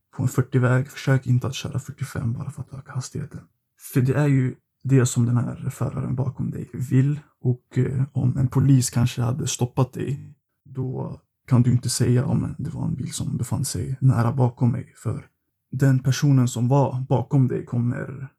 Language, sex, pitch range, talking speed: Swedish, male, 125-140 Hz, 185 wpm